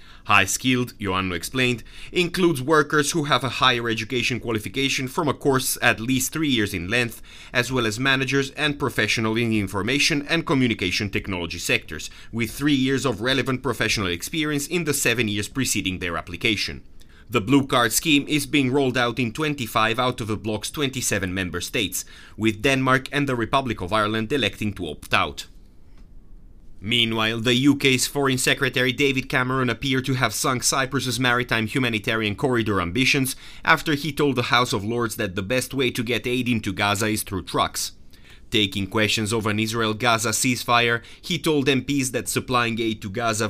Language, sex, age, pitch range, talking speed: English, male, 30-49, 105-135 Hz, 170 wpm